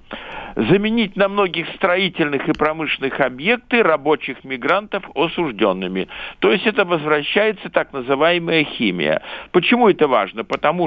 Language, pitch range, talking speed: Russian, 140-205 Hz, 115 wpm